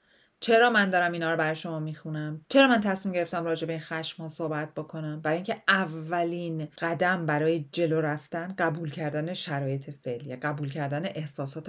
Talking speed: 165 wpm